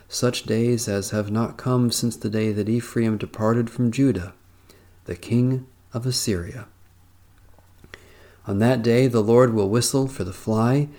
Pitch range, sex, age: 95-125 Hz, male, 40-59